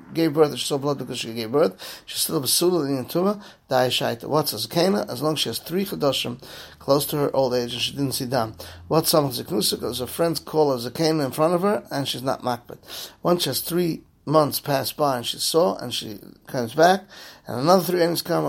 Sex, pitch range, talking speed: male, 130-165 Hz, 215 wpm